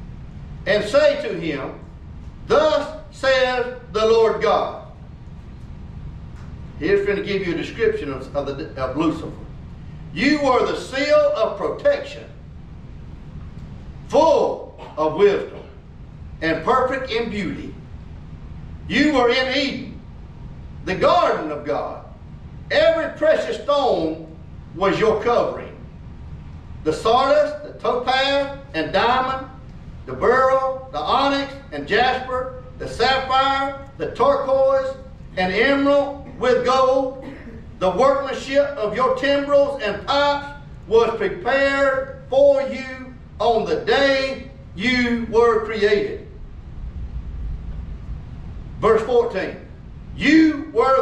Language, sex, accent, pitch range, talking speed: English, male, American, 190-280 Hz, 100 wpm